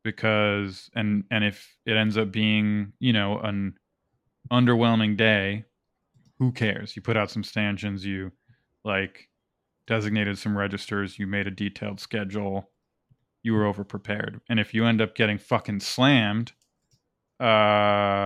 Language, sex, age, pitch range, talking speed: English, male, 20-39, 100-115 Hz, 140 wpm